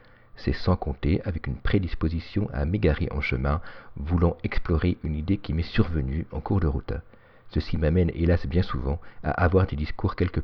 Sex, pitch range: male, 75-95 Hz